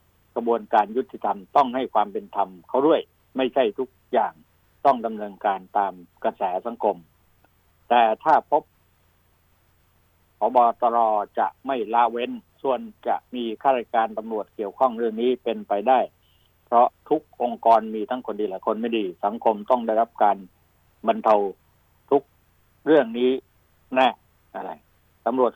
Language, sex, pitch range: Thai, male, 95-130 Hz